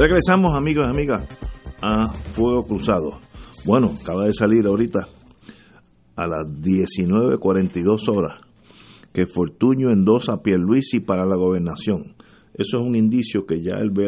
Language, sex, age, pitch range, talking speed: English, male, 50-69, 95-125 Hz, 135 wpm